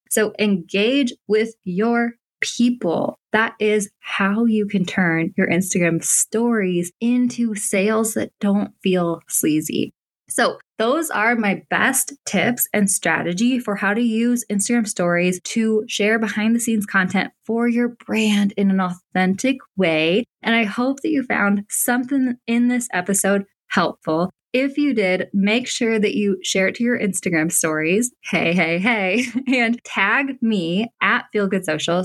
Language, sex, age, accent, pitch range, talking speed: English, female, 20-39, American, 185-230 Hz, 150 wpm